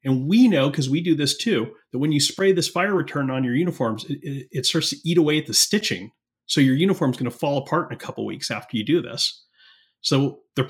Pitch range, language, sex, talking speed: 125-165 Hz, English, male, 260 wpm